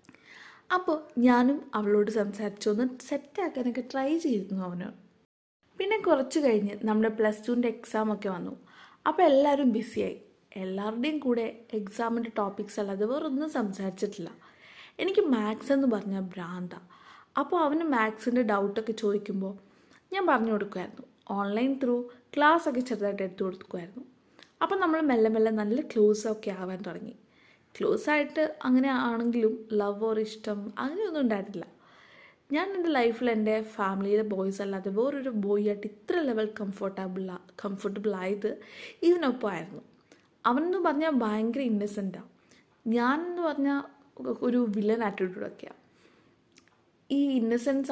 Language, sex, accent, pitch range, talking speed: Malayalam, female, native, 205-255 Hz, 110 wpm